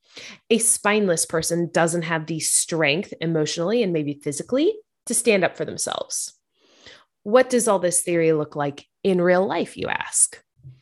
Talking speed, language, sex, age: 155 wpm, English, female, 20-39